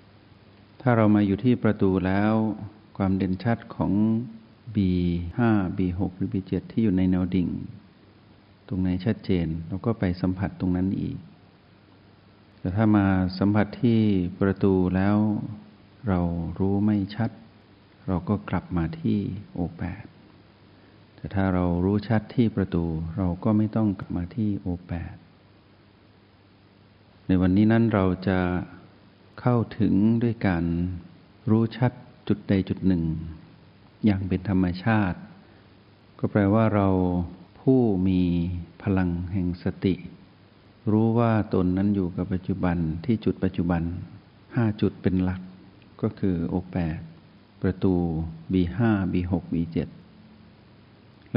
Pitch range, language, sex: 90-105 Hz, Thai, male